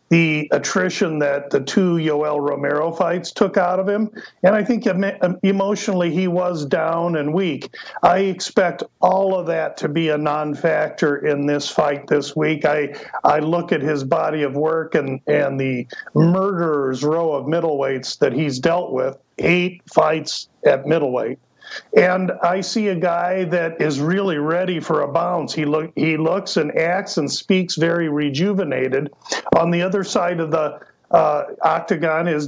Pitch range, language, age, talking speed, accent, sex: 155-190 Hz, English, 50-69, 165 wpm, American, male